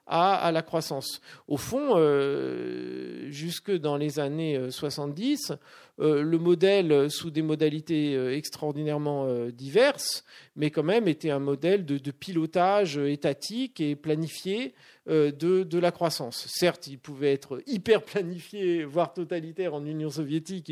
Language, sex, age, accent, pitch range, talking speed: French, male, 40-59, French, 140-175 Hz, 120 wpm